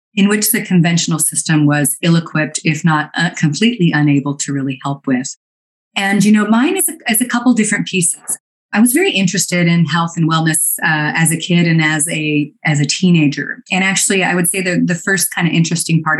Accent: American